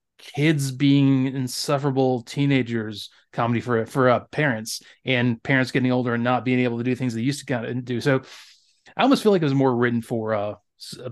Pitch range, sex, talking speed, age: 120-150 Hz, male, 200 wpm, 20-39